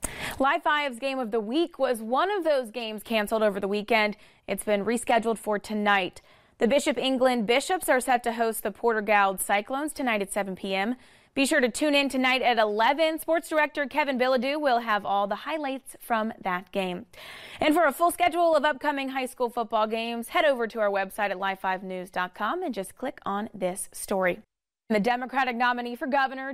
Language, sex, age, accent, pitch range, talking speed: English, female, 20-39, American, 205-265 Hz, 190 wpm